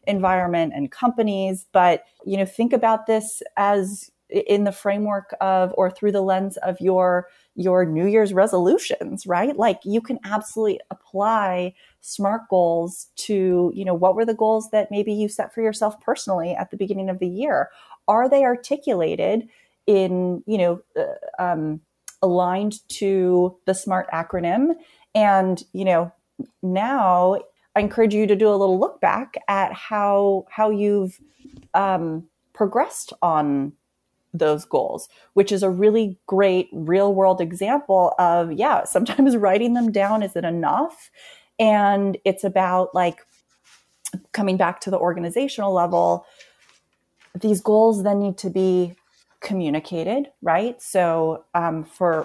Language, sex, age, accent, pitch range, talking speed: English, female, 30-49, American, 180-215 Hz, 145 wpm